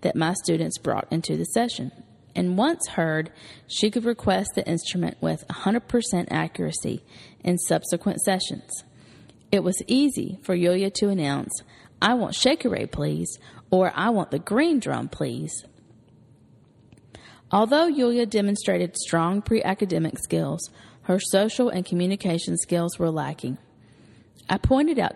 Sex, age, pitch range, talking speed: female, 40-59, 160-220 Hz, 130 wpm